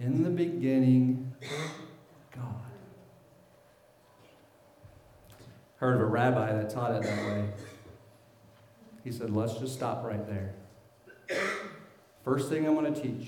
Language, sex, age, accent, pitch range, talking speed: English, male, 50-69, American, 110-135 Hz, 115 wpm